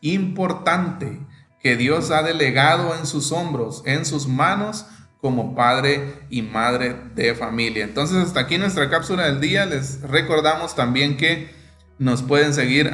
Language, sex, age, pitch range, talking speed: Spanish, male, 30-49, 130-165 Hz, 145 wpm